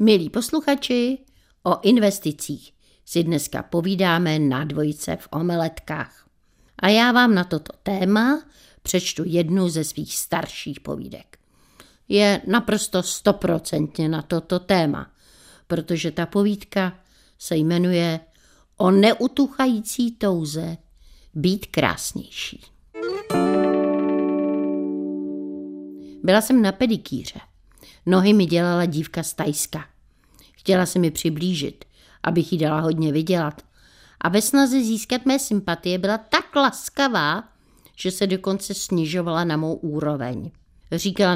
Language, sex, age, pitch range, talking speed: Czech, female, 60-79, 155-200 Hz, 110 wpm